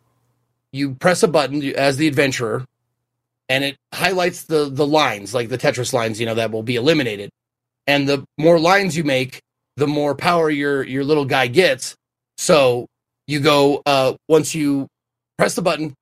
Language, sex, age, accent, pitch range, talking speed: English, male, 30-49, American, 125-155 Hz, 170 wpm